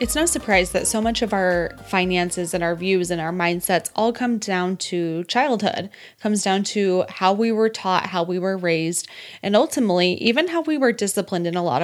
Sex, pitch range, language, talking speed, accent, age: female, 185-230 Hz, English, 210 wpm, American, 20-39